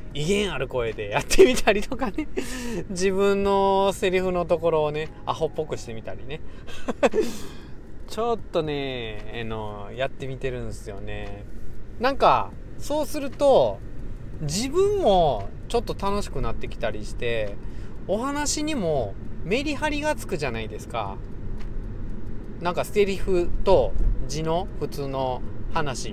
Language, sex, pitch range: Japanese, male, 110-175 Hz